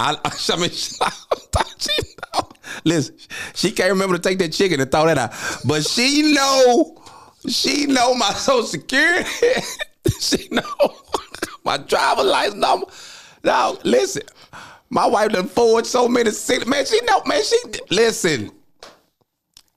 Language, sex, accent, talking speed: English, male, American, 135 wpm